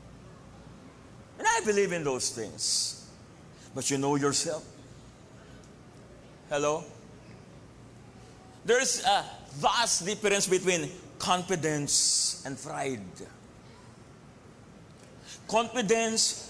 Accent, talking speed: Filipino, 75 wpm